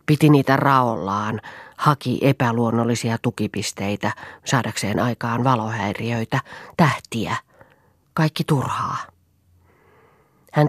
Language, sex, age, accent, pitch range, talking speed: Finnish, female, 30-49, native, 115-140 Hz, 75 wpm